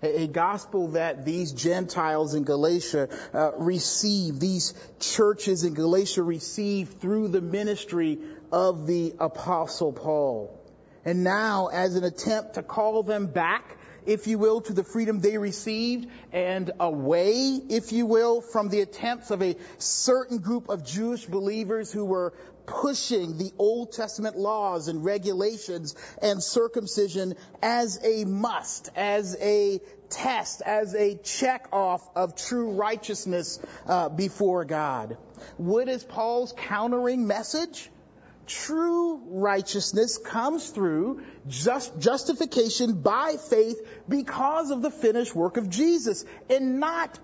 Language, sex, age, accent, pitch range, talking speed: English, male, 40-59, American, 180-230 Hz, 130 wpm